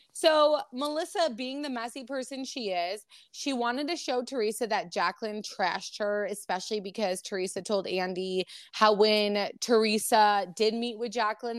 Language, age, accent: English, 20-39, American